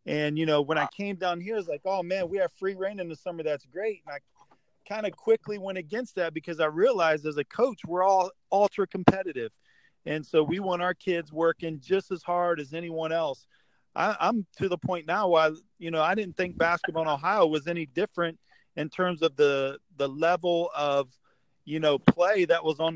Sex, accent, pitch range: male, American, 150-185 Hz